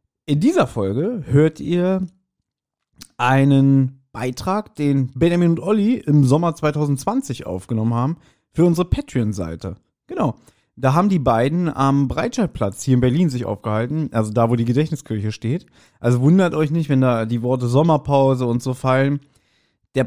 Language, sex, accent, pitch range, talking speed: German, male, German, 115-145 Hz, 150 wpm